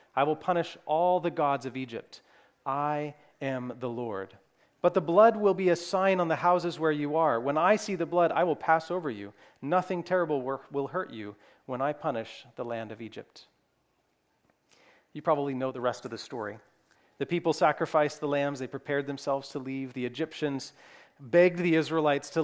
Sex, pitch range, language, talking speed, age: male, 140-170 Hz, English, 190 wpm, 40-59